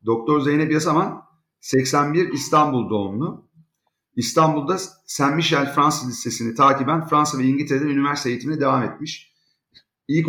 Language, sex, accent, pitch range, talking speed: Turkish, male, native, 125-160 Hz, 110 wpm